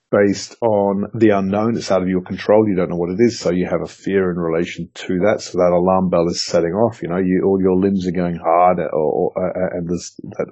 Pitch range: 90-105 Hz